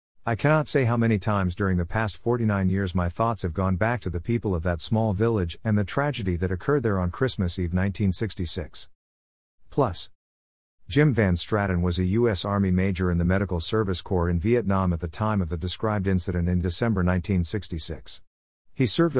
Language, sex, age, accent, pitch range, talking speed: English, male, 50-69, American, 90-110 Hz, 190 wpm